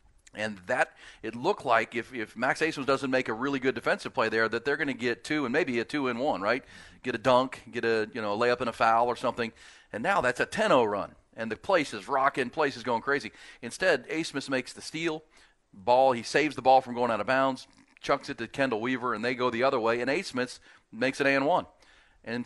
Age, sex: 40-59, male